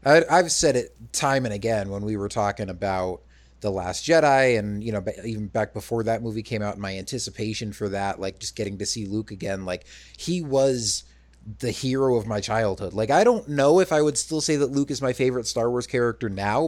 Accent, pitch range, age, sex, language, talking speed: American, 100-125 Hz, 30-49, male, English, 220 wpm